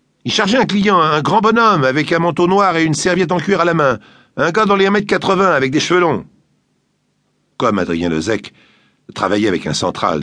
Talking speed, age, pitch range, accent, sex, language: 210 wpm, 50-69, 130-200 Hz, French, male, French